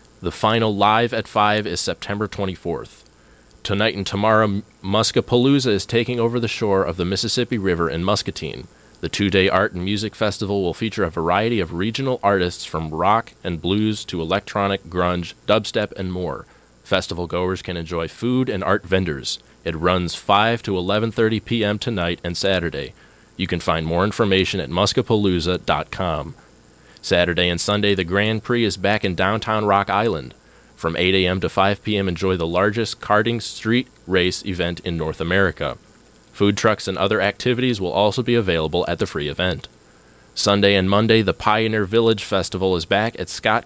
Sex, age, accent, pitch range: male, 30-49, American, 90-110 Hz